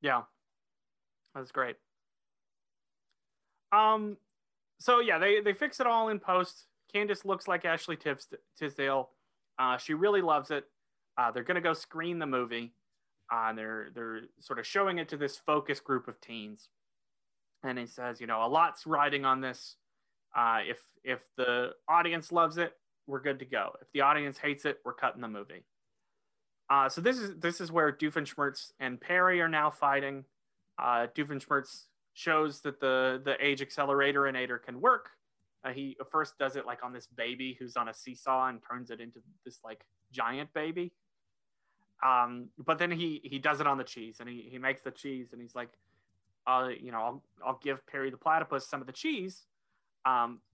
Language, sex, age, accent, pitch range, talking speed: English, male, 30-49, American, 125-165 Hz, 180 wpm